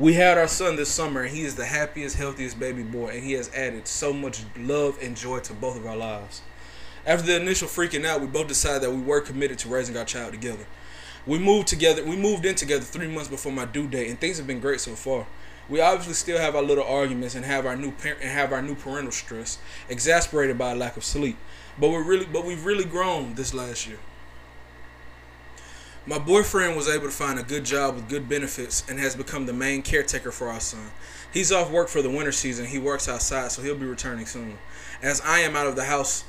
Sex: male